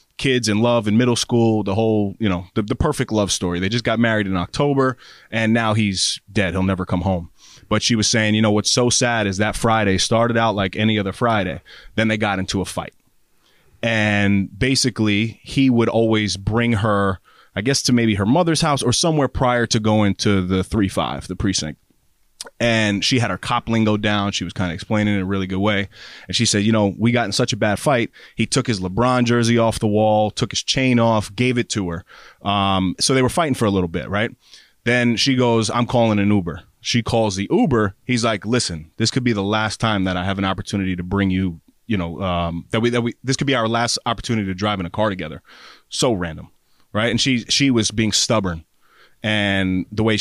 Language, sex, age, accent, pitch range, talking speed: English, male, 20-39, American, 95-120 Hz, 230 wpm